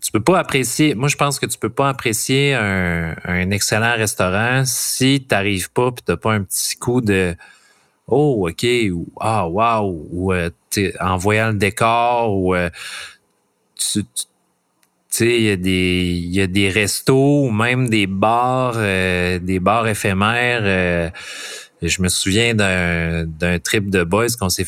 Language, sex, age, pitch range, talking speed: French, male, 30-49, 95-125 Hz, 175 wpm